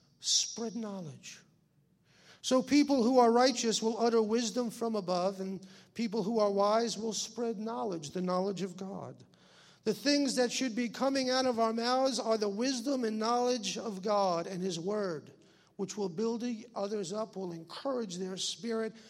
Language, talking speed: English, 165 wpm